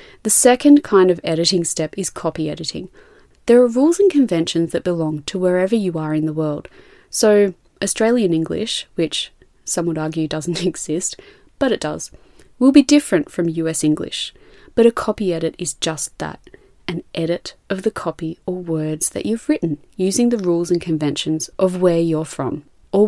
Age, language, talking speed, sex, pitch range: 30-49, English, 175 wpm, female, 160-220 Hz